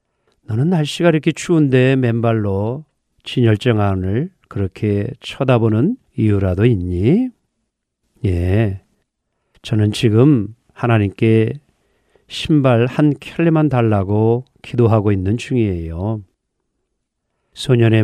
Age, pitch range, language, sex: 40-59, 105-135 Hz, Korean, male